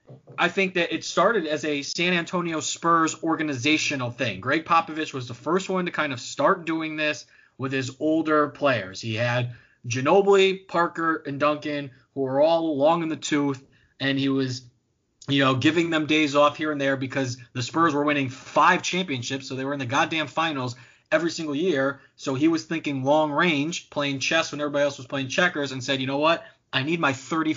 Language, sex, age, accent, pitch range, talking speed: English, male, 20-39, American, 130-160 Hz, 200 wpm